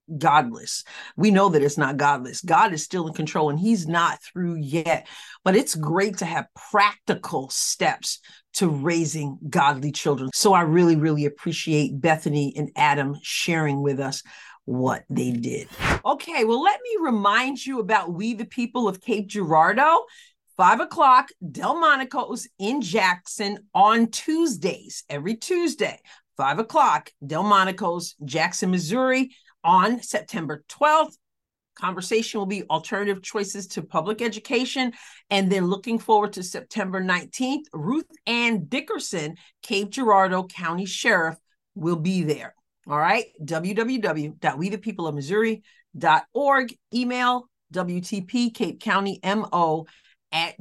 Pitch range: 160-230 Hz